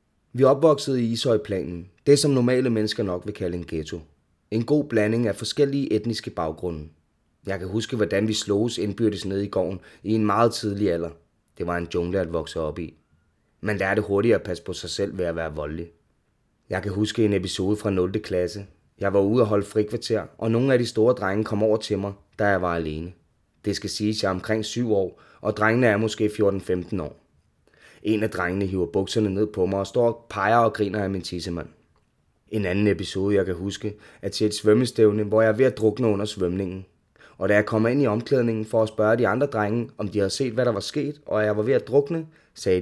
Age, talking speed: 20-39, 225 wpm